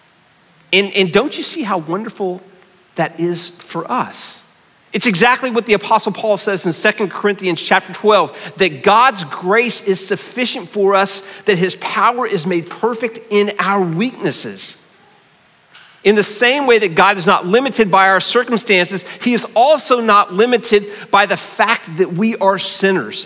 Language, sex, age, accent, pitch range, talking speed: English, male, 40-59, American, 160-210 Hz, 165 wpm